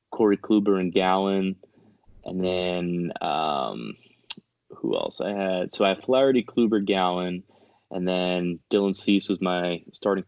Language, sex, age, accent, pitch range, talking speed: English, male, 20-39, American, 90-100 Hz, 140 wpm